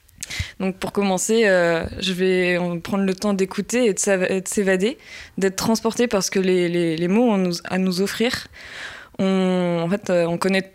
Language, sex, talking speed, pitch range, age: French, female, 155 wpm, 185-220 Hz, 20-39